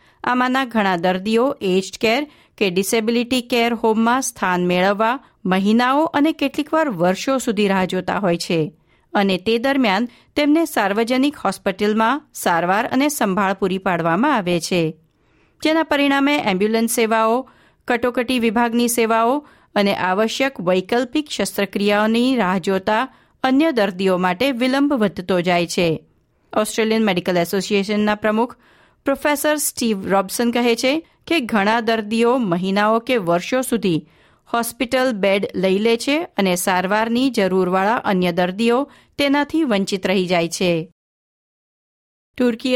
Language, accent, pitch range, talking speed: Gujarati, native, 190-245 Hz, 100 wpm